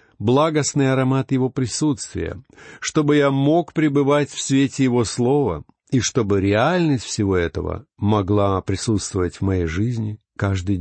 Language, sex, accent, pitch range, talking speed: Russian, male, native, 100-140 Hz, 130 wpm